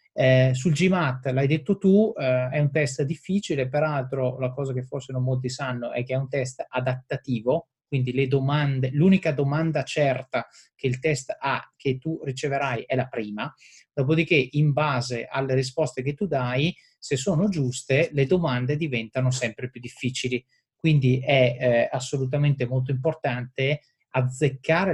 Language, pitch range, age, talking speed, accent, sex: Italian, 125-150 Hz, 30-49, 155 wpm, native, male